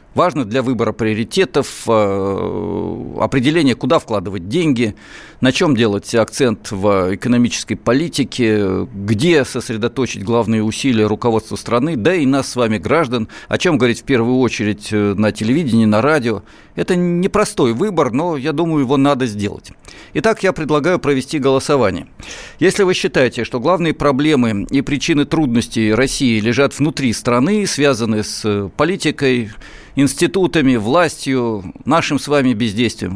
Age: 50-69